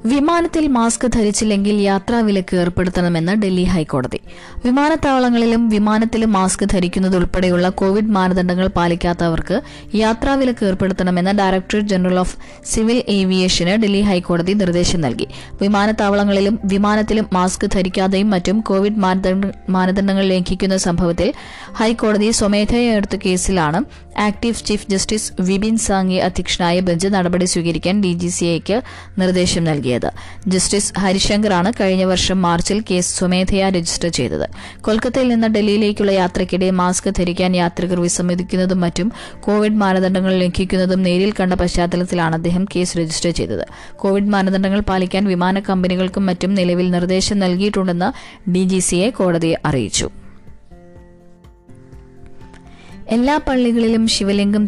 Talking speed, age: 100 wpm, 20-39